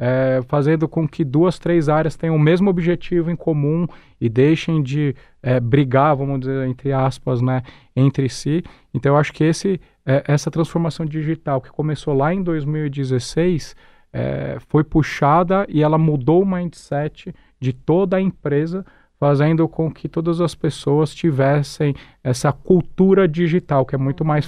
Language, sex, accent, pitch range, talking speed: Portuguese, male, Brazilian, 140-170 Hz, 145 wpm